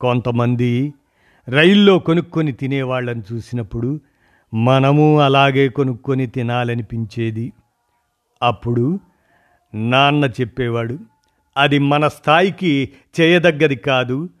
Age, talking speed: 50-69, 70 wpm